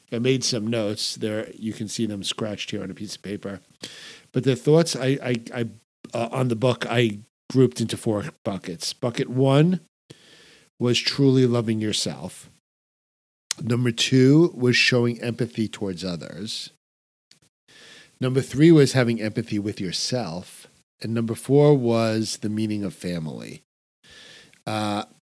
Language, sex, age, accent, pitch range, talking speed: English, male, 50-69, American, 105-130 Hz, 140 wpm